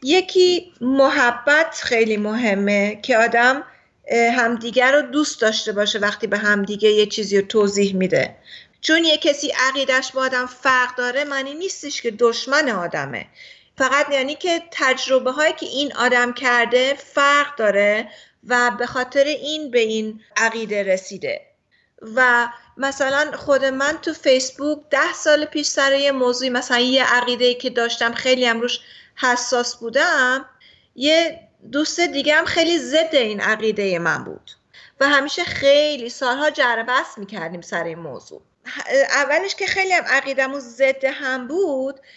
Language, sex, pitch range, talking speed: Persian, female, 240-305 Hz, 140 wpm